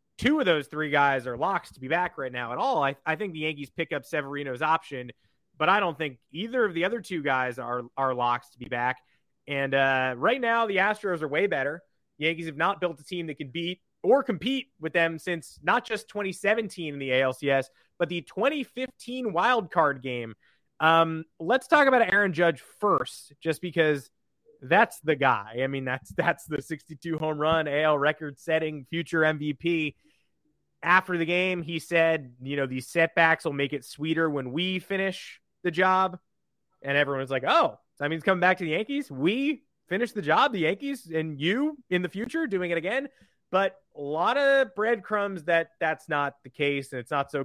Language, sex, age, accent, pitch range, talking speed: English, male, 30-49, American, 140-185 Hz, 195 wpm